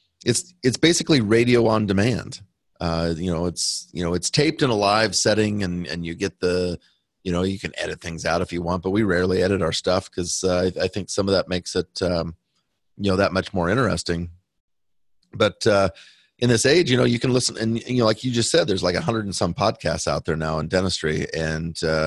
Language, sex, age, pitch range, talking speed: English, male, 30-49, 85-110 Hz, 235 wpm